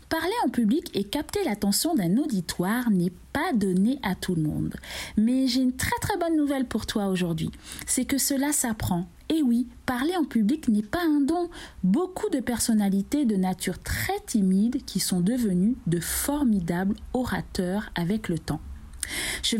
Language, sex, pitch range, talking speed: French, female, 195-275 Hz, 170 wpm